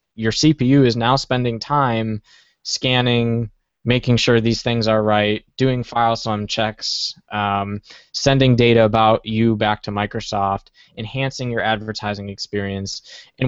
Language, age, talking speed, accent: English, 20-39, 130 wpm, American